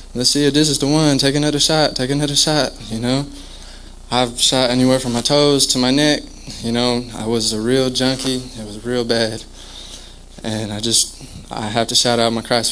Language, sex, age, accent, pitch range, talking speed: English, male, 20-39, American, 120-150 Hz, 210 wpm